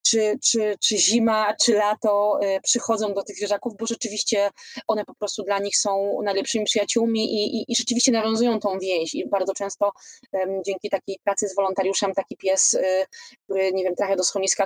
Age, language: 20-39, Polish